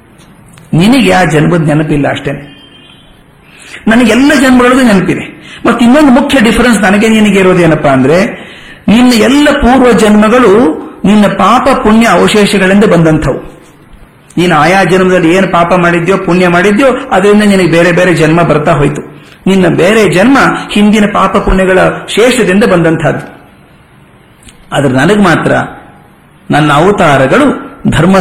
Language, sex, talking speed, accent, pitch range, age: Kannada, male, 115 wpm, native, 155-210 Hz, 50-69